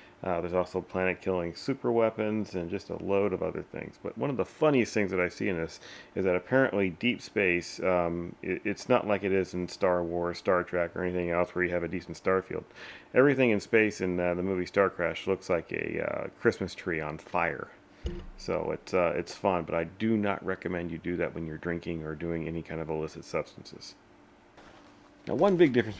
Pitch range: 90-115 Hz